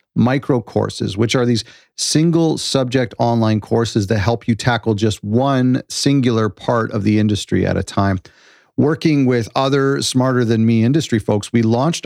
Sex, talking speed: male, 165 wpm